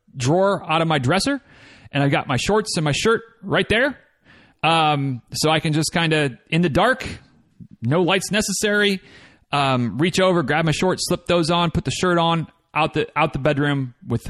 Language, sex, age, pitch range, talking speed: English, male, 30-49, 145-185 Hz, 195 wpm